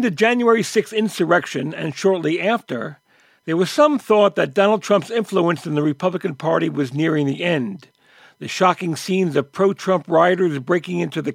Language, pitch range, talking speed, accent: English, 165-215 Hz, 170 wpm, American